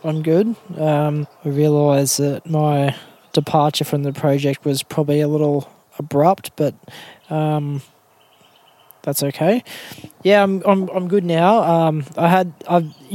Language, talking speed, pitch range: English, 135 wpm, 145-165 Hz